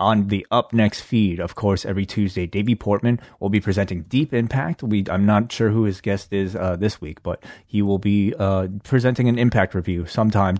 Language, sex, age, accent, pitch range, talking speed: English, male, 30-49, American, 90-110 Hz, 205 wpm